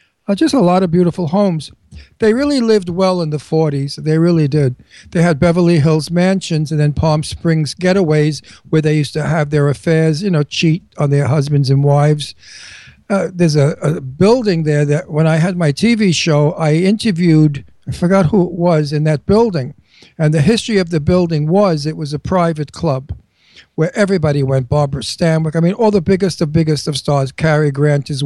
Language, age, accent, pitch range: English, 60-79, American, 150-180 Hz